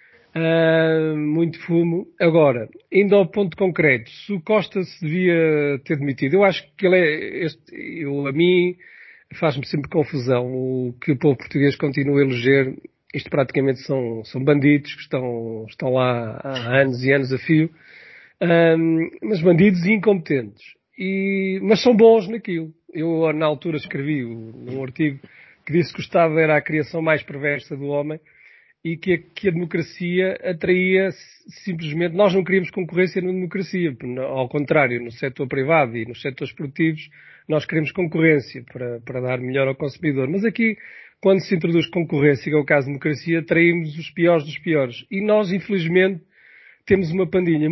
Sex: male